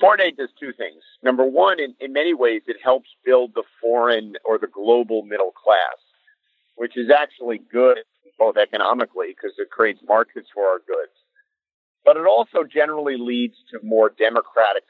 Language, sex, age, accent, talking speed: English, male, 50-69, American, 170 wpm